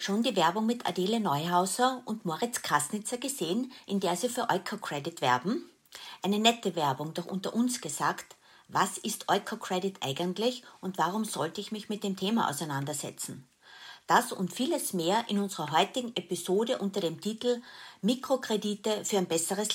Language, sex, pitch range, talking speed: German, female, 180-235 Hz, 155 wpm